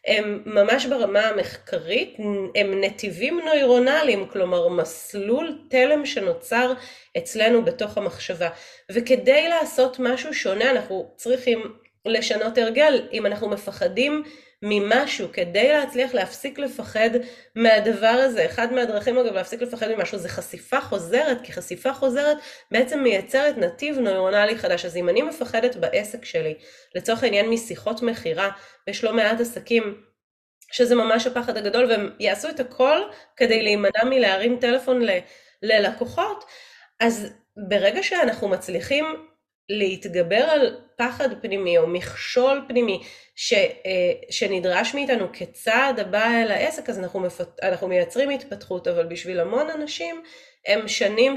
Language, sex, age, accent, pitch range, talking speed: Hebrew, female, 30-49, native, 200-265 Hz, 125 wpm